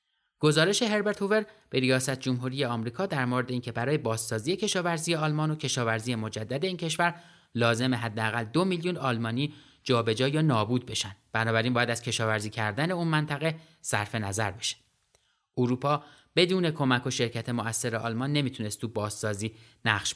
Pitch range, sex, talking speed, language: 115-155 Hz, male, 150 wpm, Persian